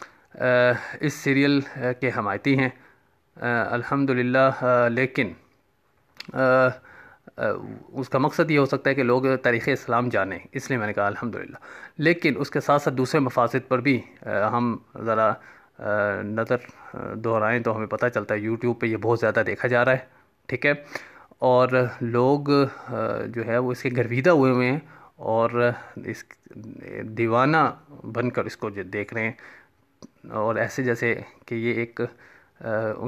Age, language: 30-49, Urdu